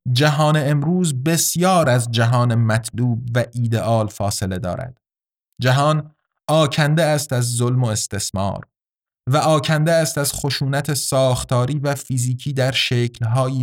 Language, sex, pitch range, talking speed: Persian, male, 120-145 Hz, 120 wpm